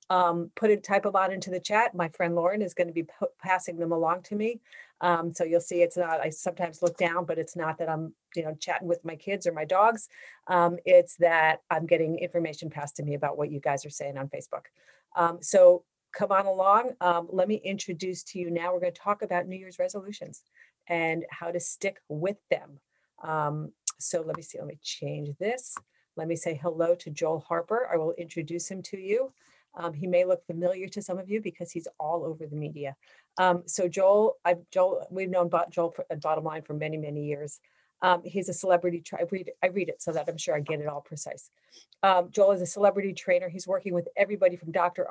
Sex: female